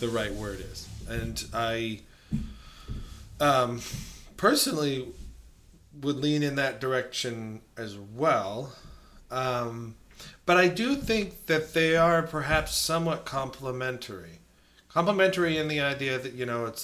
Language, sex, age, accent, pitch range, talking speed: English, male, 40-59, American, 110-140 Hz, 120 wpm